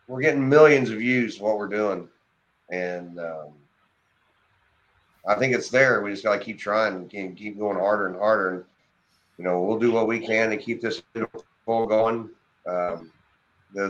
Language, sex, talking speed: English, male, 175 wpm